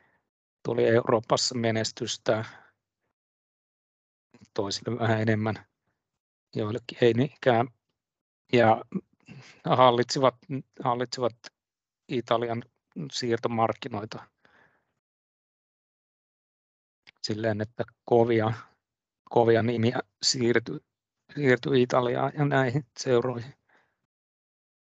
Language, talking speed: Finnish, 60 wpm